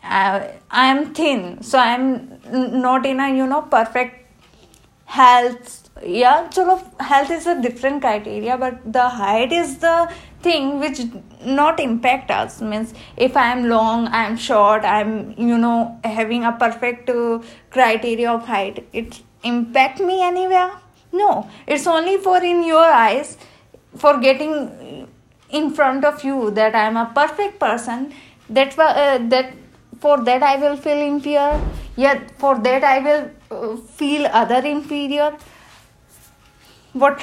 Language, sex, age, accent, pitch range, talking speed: Hindi, female, 20-39, native, 220-280 Hz, 155 wpm